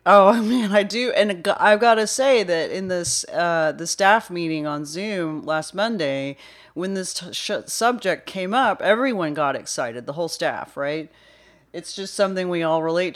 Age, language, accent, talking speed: 40-59, English, American, 180 wpm